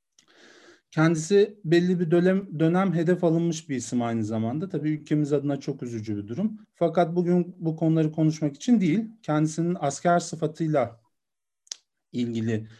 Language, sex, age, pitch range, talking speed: Turkish, male, 40-59, 150-200 Hz, 135 wpm